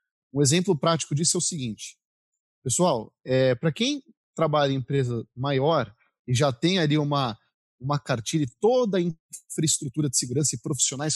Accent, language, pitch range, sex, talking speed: Brazilian, Portuguese, 135-180 Hz, male, 155 wpm